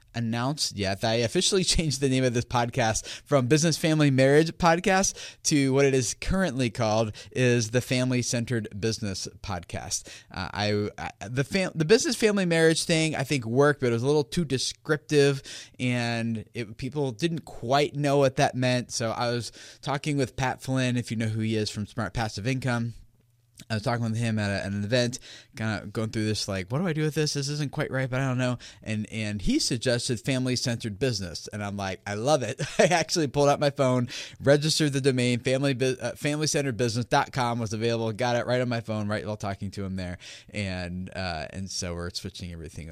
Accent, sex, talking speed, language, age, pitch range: American, male, 205 wpm, English, 20-39, 105-140 Hz